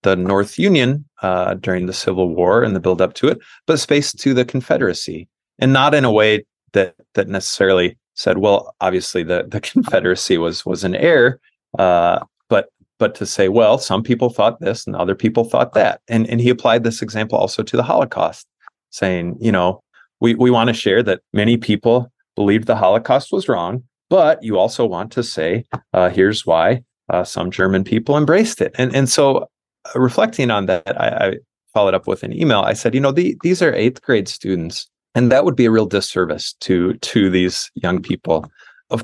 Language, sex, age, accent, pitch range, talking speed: English, male, 30-49, American, 95-125 Hz, 195 wpm